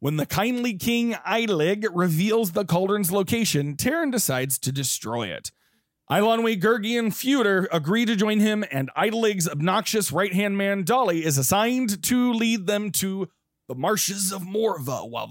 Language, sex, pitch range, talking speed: English, male, 170-225 Hz, 150 wpm